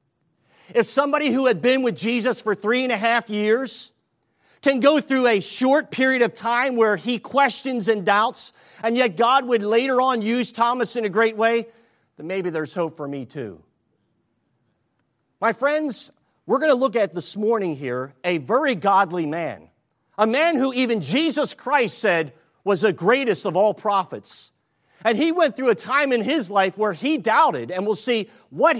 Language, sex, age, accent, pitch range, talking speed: English, male, 50-69, American, 195-250 Hz, 185 wpm